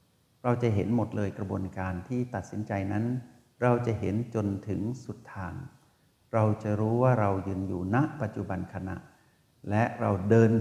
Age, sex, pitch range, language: 60-79, male, 95-120 Hz, Thai